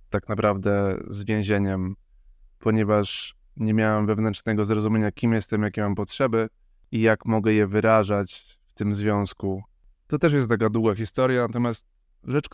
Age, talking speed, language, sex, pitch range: 20-39, 145 wpm, Polish, male, 100-115 Hz